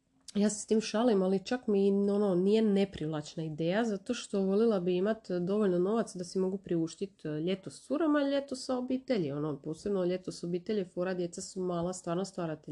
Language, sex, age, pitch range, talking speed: Croatian, female, 30-49, 170-210 Hz, 195 wpm